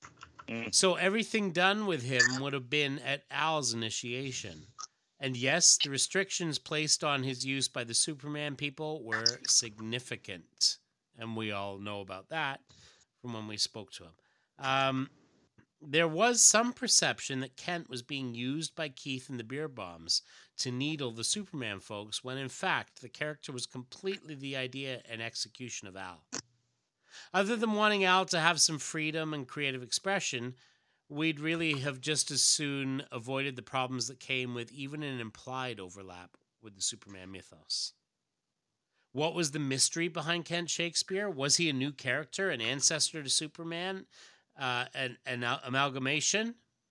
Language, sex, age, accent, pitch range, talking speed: English, male, 30-49, American, 120-160 Hz, 155 wpm